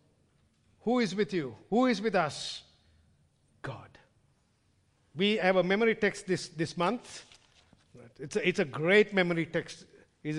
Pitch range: 170-250 Hz